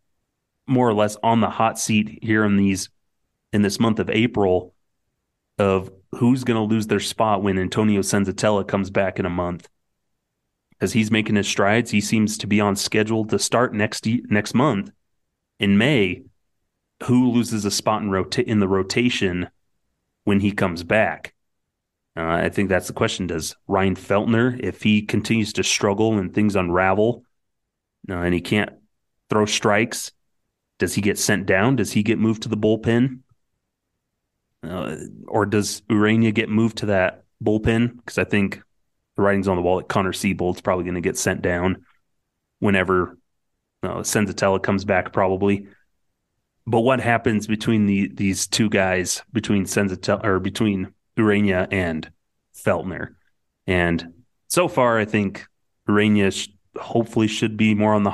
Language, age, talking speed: English, 30-49, 160 wpm